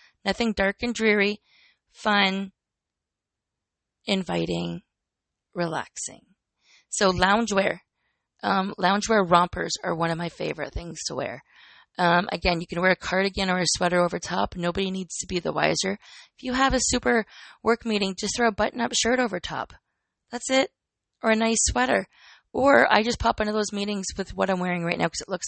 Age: 20-39